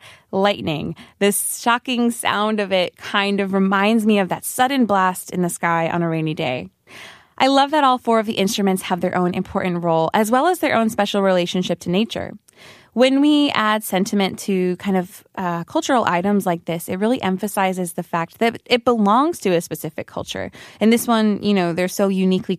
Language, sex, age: Korean, female, 20-39